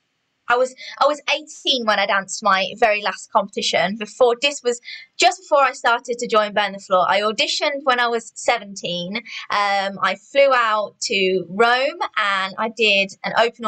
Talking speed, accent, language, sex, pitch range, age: 180 wpm, British, English, female, 195-250 Hz, 20-39